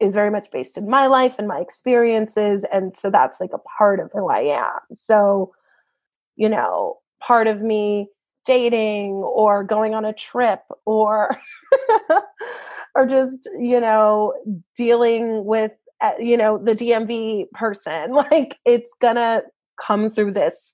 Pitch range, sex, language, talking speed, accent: 205-265 Hz, female, English, 145 wpm, American